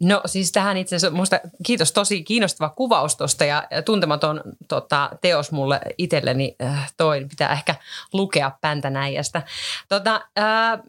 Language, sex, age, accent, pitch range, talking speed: Finnish, female, 30-49, native, 150-185 Hz, 130 wpm